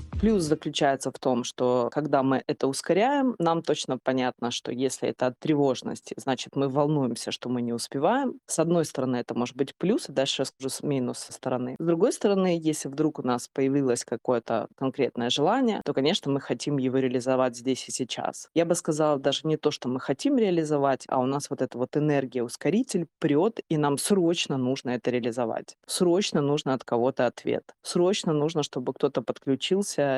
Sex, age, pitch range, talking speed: female, 20-39, 130-160 Hz, 185 wpm